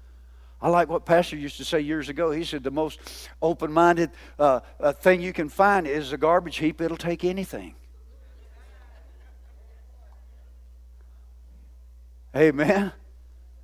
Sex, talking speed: male, 115 wpm